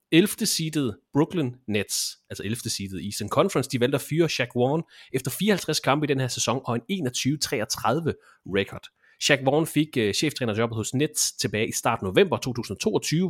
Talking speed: 175 wpm